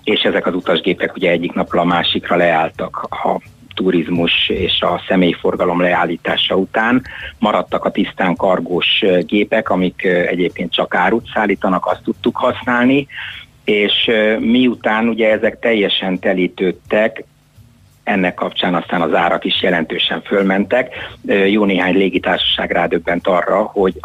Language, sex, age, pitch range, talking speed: Hungarian, male, 60-79, 90-110 Hz, 125 wpm